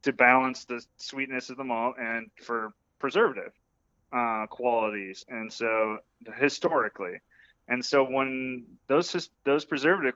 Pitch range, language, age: 115-140 Hz, English, 30-49